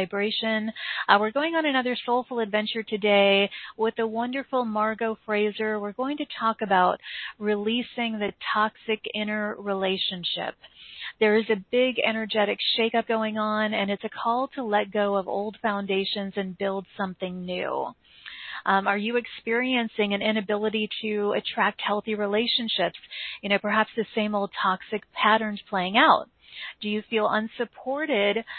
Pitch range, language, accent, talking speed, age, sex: 205-225 Hz, English, American, 145 wpm, 40-59, female